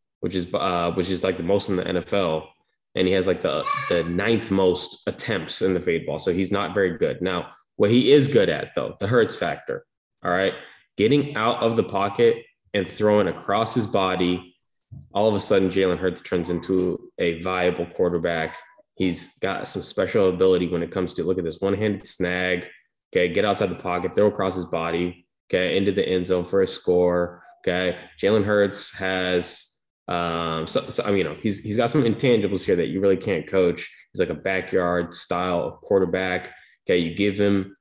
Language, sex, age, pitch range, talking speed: English, male, 10-29, 90-105 Hz, 200 wpm